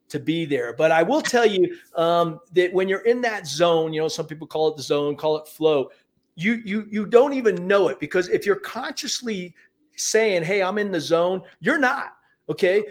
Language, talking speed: English, 215 wpm